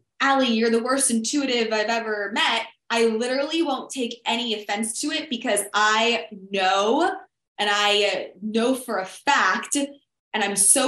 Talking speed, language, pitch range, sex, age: 155 wpm, English, 205-275 Hz, female, 20-39